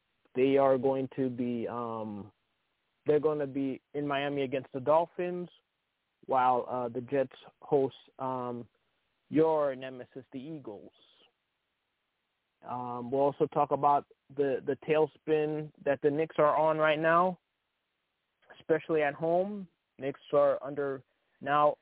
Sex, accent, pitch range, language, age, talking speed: male, American, 135-155 Hz, English, 20-39, 130 wpm